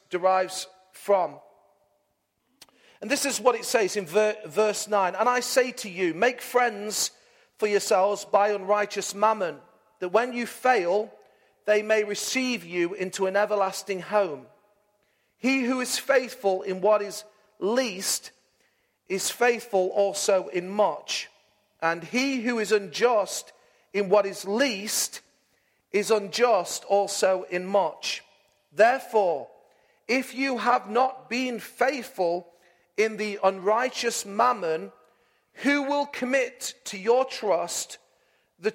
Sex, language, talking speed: male, English, 125 wpm